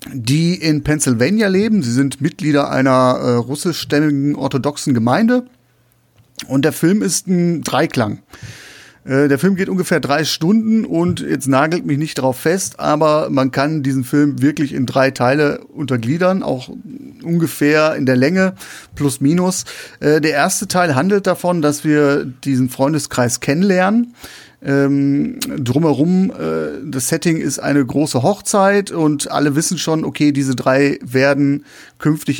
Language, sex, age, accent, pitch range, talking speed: German, male, 30-49, German, 130-165 Hz, 145 wpm